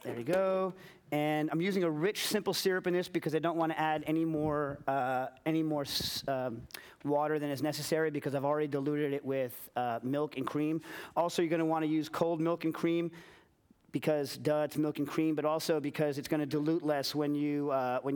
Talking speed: 210 wpm